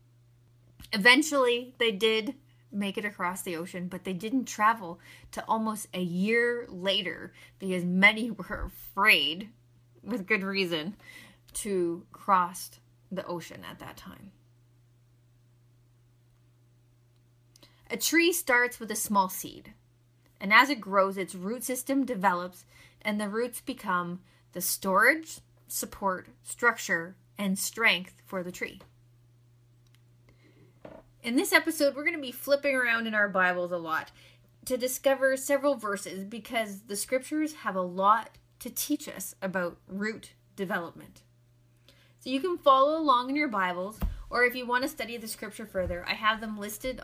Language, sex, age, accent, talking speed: English, female, 20-39, American, 140 wpm